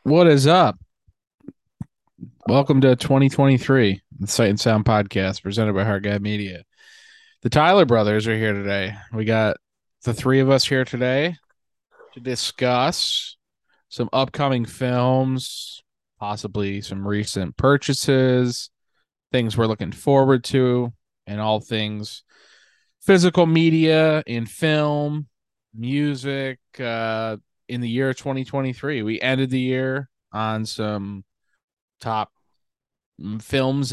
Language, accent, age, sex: English, American, 20-39, male